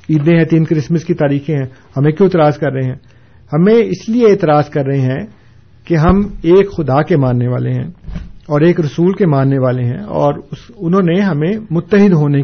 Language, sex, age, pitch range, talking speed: Urdu, male, 50-69, 125-160 Hz, 200 wpm